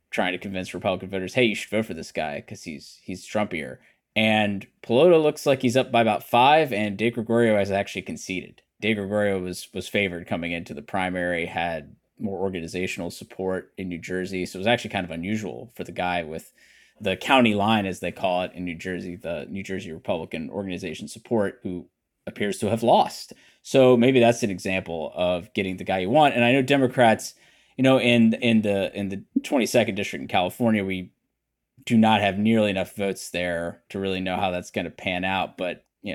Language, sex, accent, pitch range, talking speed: English, male, American, 90-115 Hz, 205 wpm